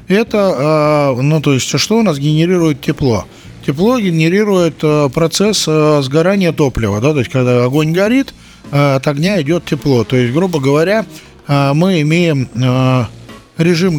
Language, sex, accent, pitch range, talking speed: Russian, male, native, 135-175 Hz, 135 wpm